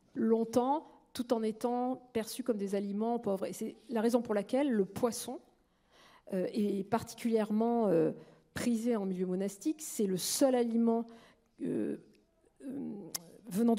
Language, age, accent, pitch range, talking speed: French, 50-69, French, 205-250 Hz, 140 wpm